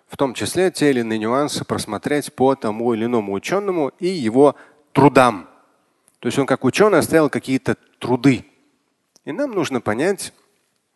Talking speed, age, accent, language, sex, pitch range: 155 wpm, 30-49, native, Russian, male, 110-160 Hz